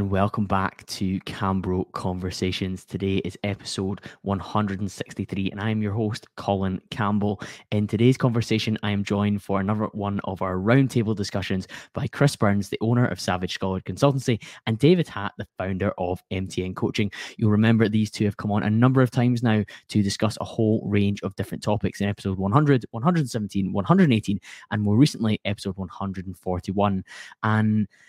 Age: 10-29